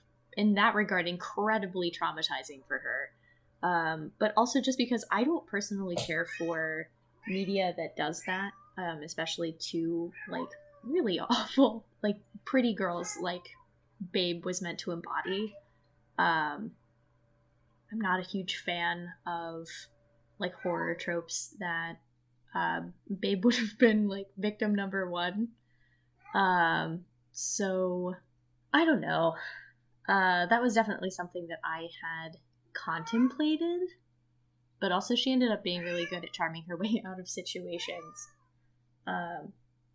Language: English